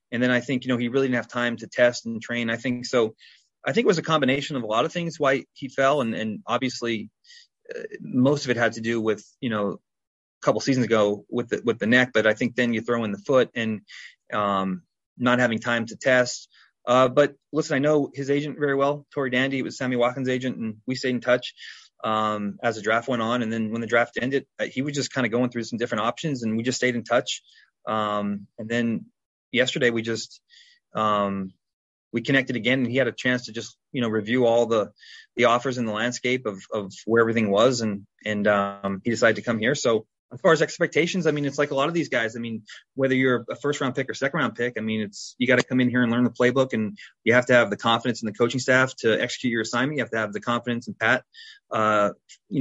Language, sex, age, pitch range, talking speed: English, male, 30-49, 115-135 Hz, 250 wpm